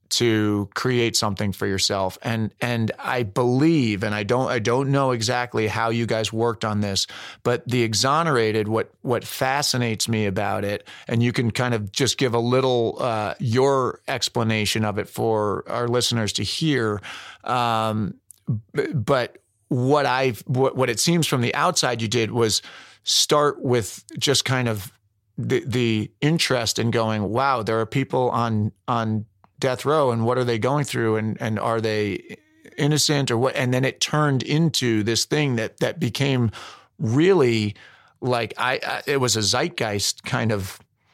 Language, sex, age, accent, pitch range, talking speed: English, male, 40-59, American, 110-130 Hz, 170 wpm